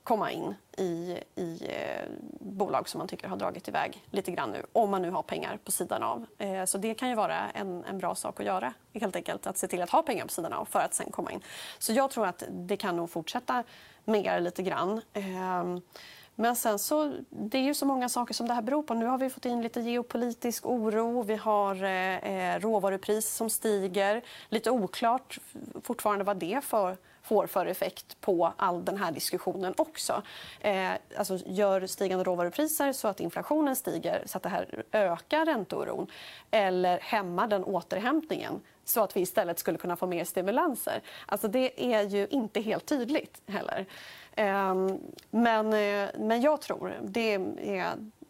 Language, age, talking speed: Swedish, 30-49, 180 wpm